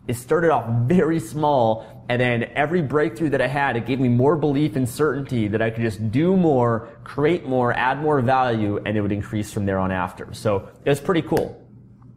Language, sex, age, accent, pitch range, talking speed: English, male, 30-49, American, 105-140 Hz, 210 wpm